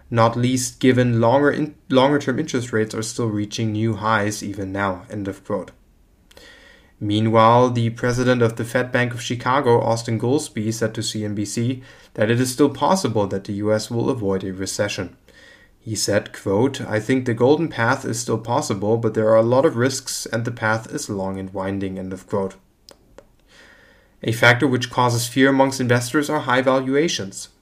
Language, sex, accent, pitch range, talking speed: English, male, German, 110-125 Hz, 175 wpm